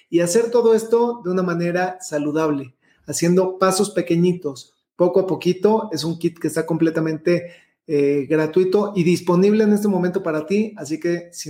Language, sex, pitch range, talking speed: Spanish, male, 170-205 Hz, 165 wpm